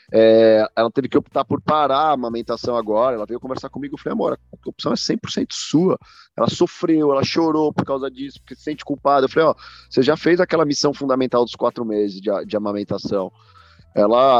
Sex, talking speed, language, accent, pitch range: male, 205 wpm, Portuguese, Brazilian, 115-150 Hz